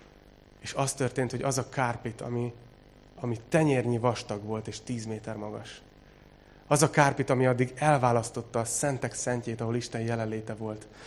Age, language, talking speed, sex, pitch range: 30-49, Hungarian, 155 wpm, male, 115-135 Hz